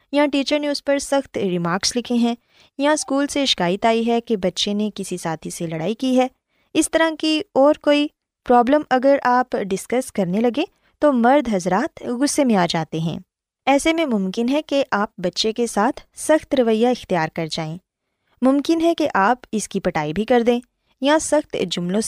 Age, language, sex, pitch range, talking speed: 20-39, Urdu, female, 190-275 Hz, 190 wpm